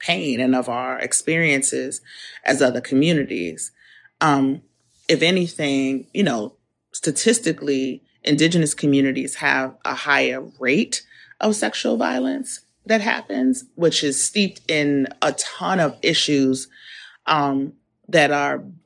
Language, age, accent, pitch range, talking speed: English, 30-49, American, 140-170 Hz, 115 wpm